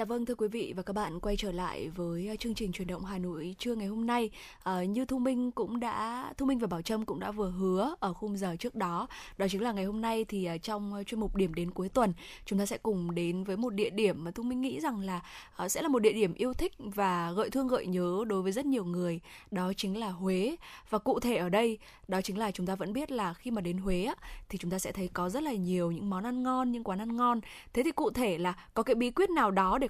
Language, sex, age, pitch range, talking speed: Vietnamese, female, 10-29, 185-240 Hz, 275 wpm